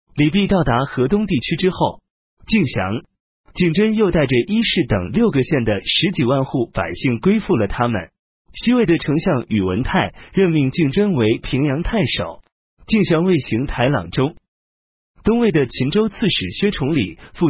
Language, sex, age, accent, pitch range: Chinese, male, 30-49, native, 115-185 Hz